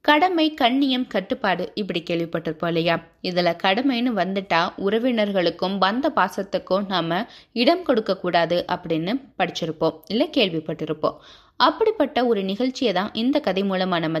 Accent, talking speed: native, 80 wpm